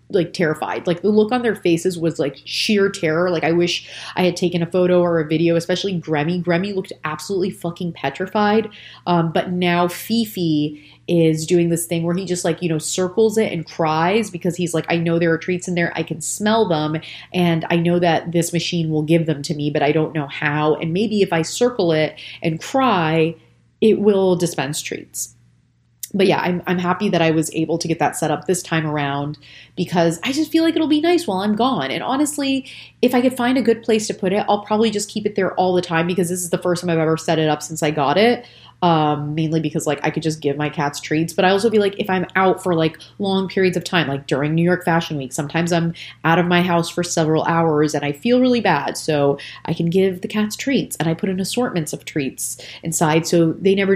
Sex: female